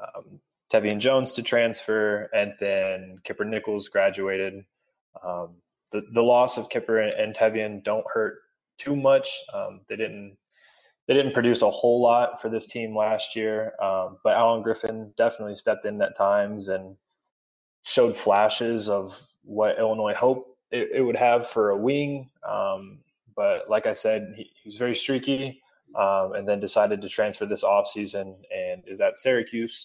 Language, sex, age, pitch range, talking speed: English, male, 20-39, 100-120 Hz, 165 wpm